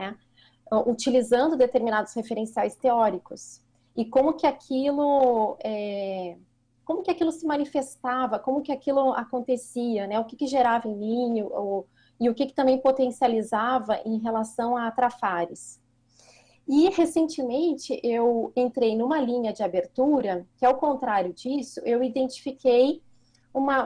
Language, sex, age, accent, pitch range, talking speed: Portuguese, female, 30-49, Brazilian, 220-265 Hz, 120 wpm